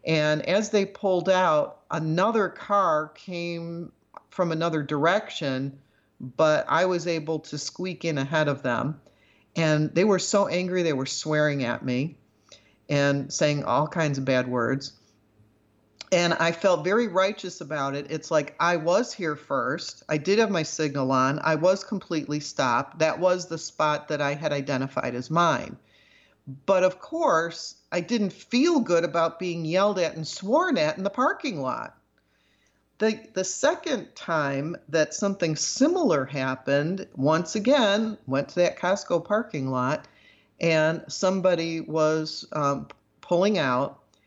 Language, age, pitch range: English, 50-69, 140-185 Hz